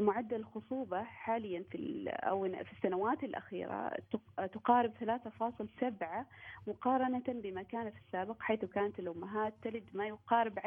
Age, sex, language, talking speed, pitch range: 30-49, female, Arabic, 120 wpm, 195-250 Hz